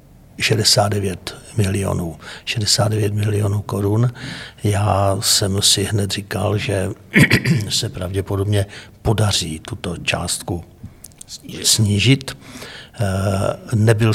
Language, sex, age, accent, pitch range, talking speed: Czech, male, 60-79, native, 100-115 Hz, 70 wpm